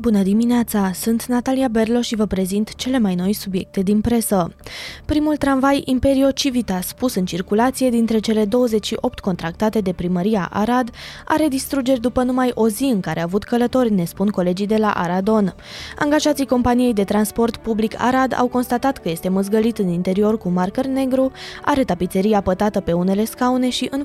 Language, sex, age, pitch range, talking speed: Romanian, female, 20-39, 195-255 Hz, 170 wpm